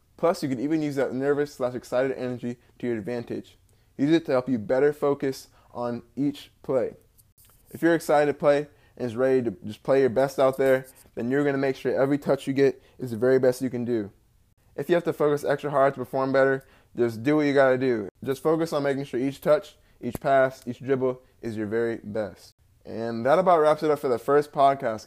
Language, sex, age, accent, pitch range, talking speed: English, male, 20-39, American, 120-140 Hz, 225 wpm